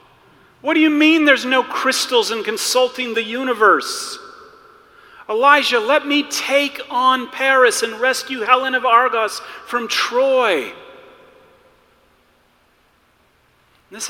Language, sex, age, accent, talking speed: English, male, 40-59, American, 105 wpm